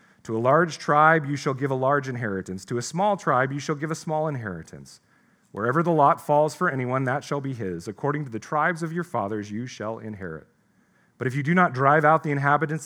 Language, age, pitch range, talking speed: English, 40-59, 125-165 Hz, 230 wpm